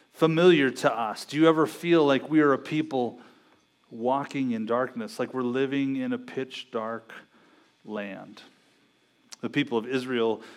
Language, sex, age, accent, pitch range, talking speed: English, male, 30-49, American, 120-150 Hz, 155 wpm